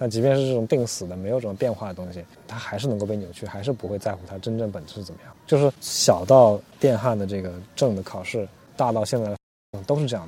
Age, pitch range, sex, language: 20-39, 95-125 Hz, male, Chinese